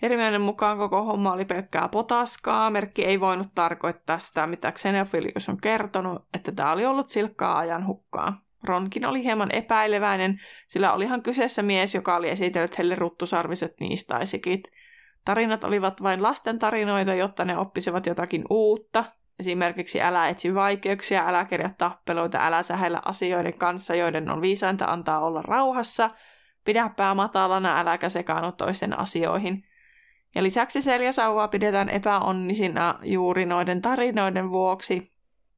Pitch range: 175-210 Hz